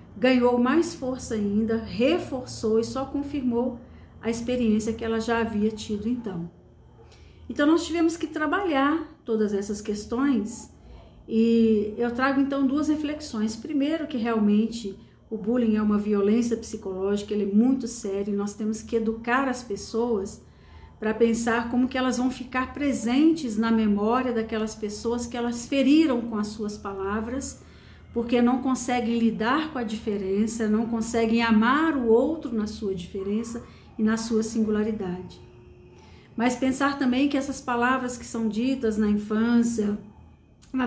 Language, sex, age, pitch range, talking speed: Portuguese, female, 40-59, 215-255 Hz, 145 wpm